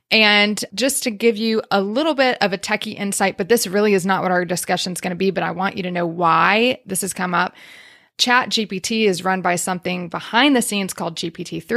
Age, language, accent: 20-39, English, American